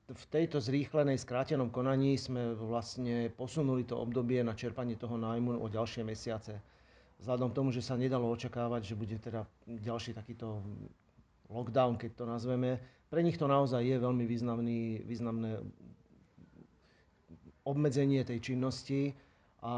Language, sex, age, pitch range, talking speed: Slovak, male, 40-59, 115-135 Hz, 135 wpm